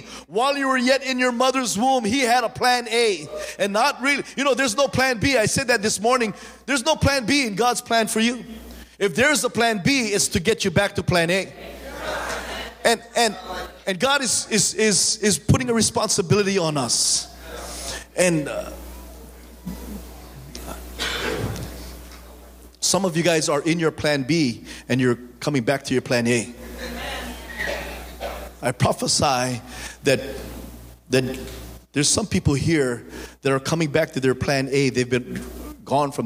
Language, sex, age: English, male, 30-49